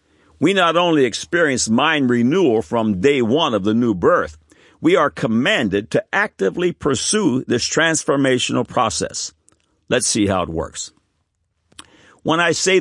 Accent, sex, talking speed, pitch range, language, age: American, male, 140 wpm, 105-145 Hz, English, 60-79